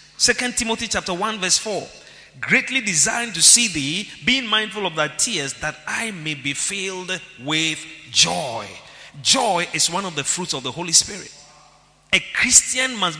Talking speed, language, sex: 165 wpm, English, male